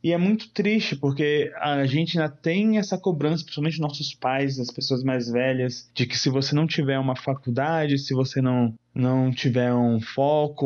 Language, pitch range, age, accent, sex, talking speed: Portuguese, 125-160 Hz, 20-39, Brazilian, male, 185 wpm